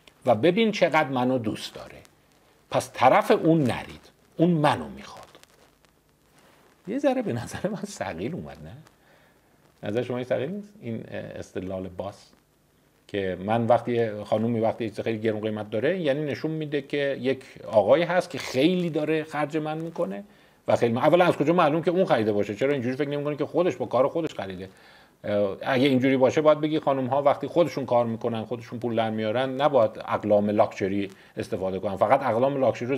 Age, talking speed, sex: 50-69, 175 wpm, male